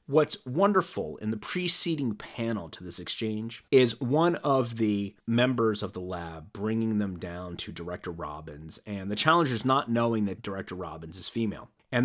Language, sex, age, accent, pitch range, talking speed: English, male, 30-49, American, 110-165 Hz, 170 wpm